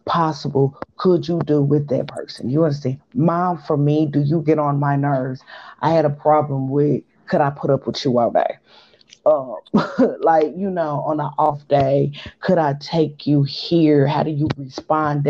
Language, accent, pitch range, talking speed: English, American, 145-165 Hz, 190 wpm